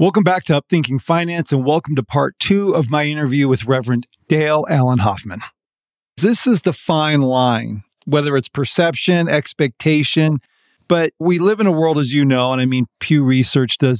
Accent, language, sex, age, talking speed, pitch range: American, English, male, 40-59, 180 wpm, 135-170 Hz